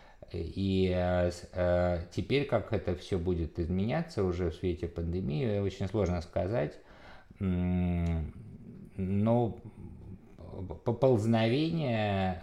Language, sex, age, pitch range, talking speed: Russian, male, 50-69, 90-105 Hz, 75 wpm